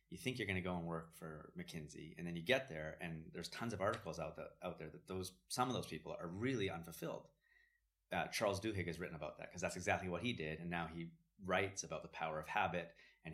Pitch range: 85-100 Hz